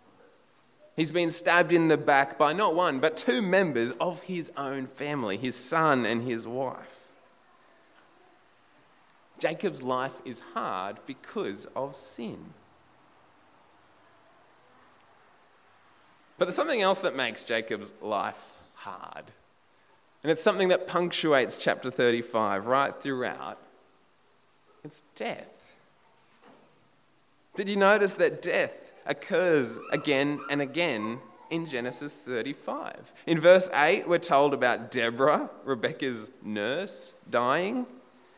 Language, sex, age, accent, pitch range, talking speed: English, male, 20-39, Australian, 135-200 Hz, 110 wpm